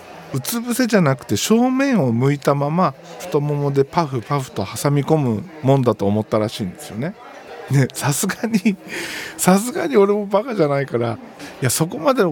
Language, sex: Japanese, male